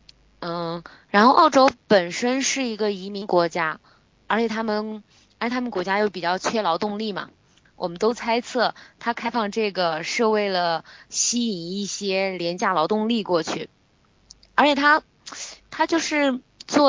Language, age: Chinese, 20-39